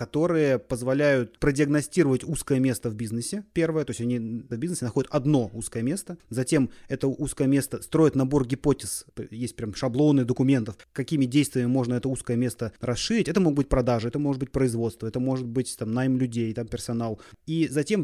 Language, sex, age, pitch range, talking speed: Russian, male, 30-49, 125-150 Hz, 175 wpm